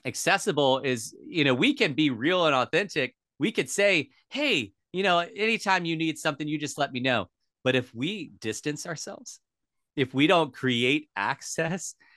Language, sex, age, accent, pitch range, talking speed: English, male, 30-49, American, 105-145 Hz, 175 wpm